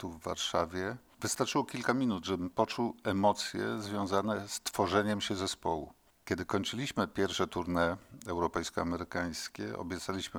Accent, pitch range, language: native, 90-105 Hz, Polish